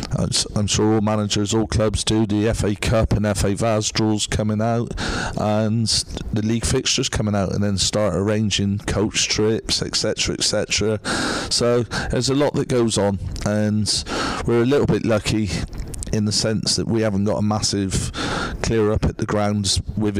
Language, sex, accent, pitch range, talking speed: English, male, British, 100-110 Hz, 180 wpm